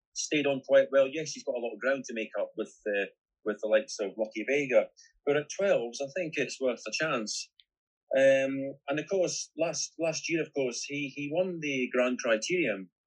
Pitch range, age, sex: 110-145 Hz, 30-49, male